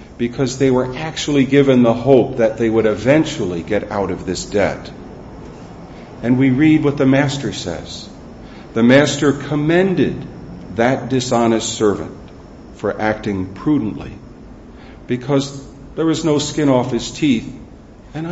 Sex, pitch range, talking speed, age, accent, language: male, 105-135 Hz, 135 wpm, 50-69, American, English